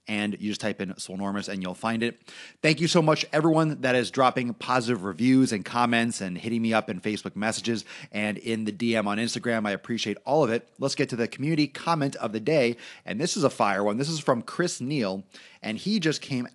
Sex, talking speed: male, 230 wpm